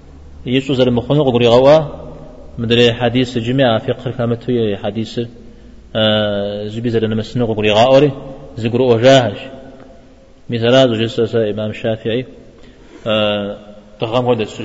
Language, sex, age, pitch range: Czech, male, 30-49, 110-125 Hz